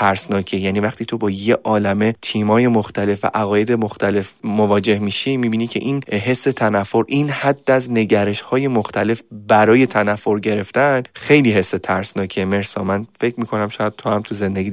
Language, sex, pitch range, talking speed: Persian, male, 100-120 Hz, 160 wpm